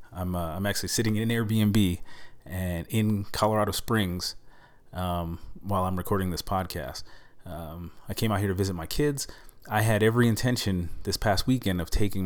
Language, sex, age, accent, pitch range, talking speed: English, male, 30-49, American, 90-105 Hz, 170 wpm